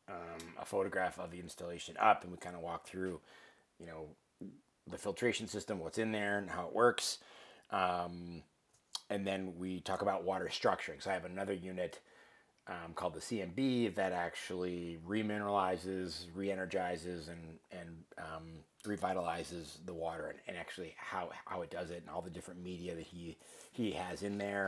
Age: 30-49